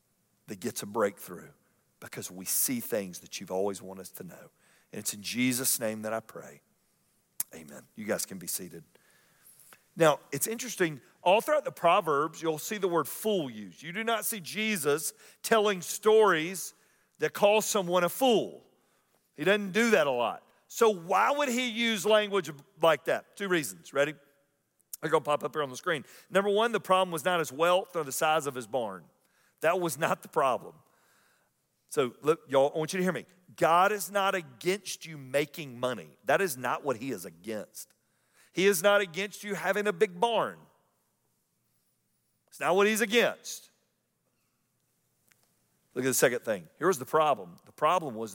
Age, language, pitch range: 40-59, English, 145-210 Hz